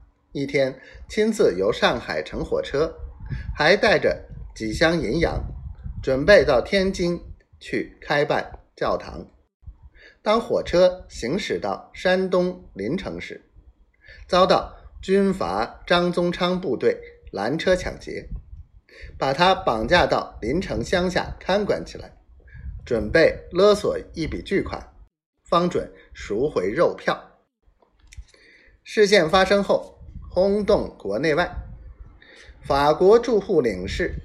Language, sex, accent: Chinese, male, native